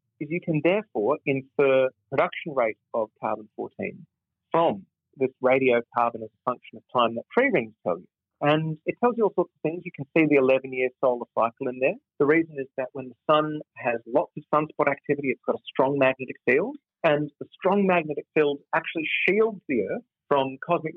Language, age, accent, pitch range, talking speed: English, 40-59, Australian, 120-155 Hz, 195 wpm